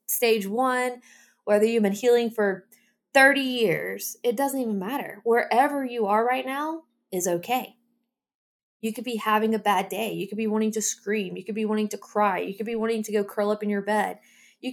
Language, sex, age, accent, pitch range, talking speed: English, female, 20-39, American, 200-245 Hz, 210 wpm